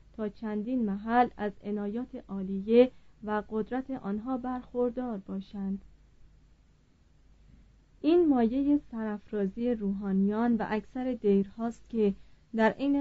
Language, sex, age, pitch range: Persian, female, 30-49, 200-250 Hz